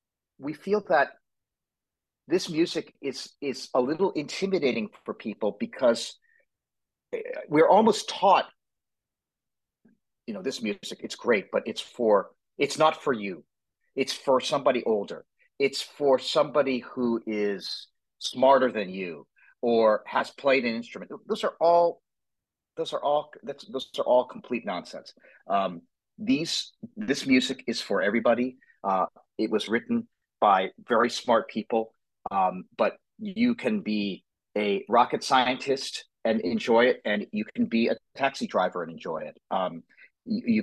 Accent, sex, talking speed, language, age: American, male, 140 wpm, English, 40-59